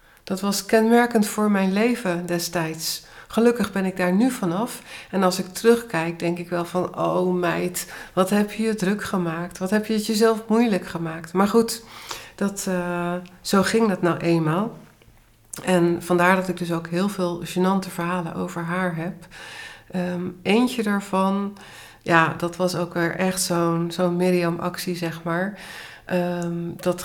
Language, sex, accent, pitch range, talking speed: Dutch, female, Dutch, 170-205 Hz, 155 wpm